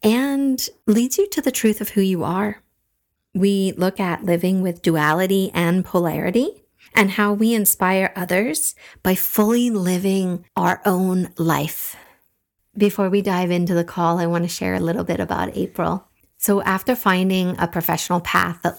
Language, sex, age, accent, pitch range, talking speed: English, female, 30-49, American, 170-195 Hz, 165 wpm